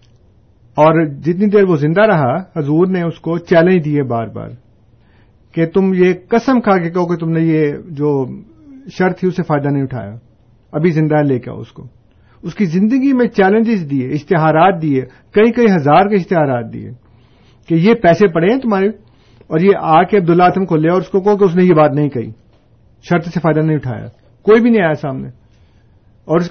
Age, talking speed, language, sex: 50-69, 200 wpm, Urdu, male